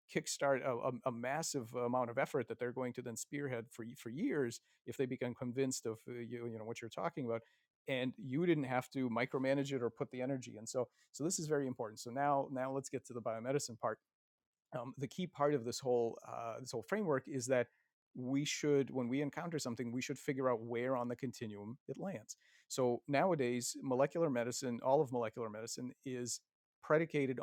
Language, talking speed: English, 210 wpm